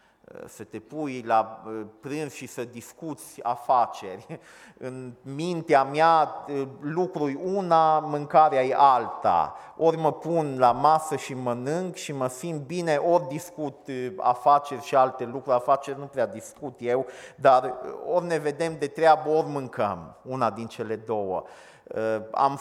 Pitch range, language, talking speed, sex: 125-165 Hz, Romanian, 140 wpm, male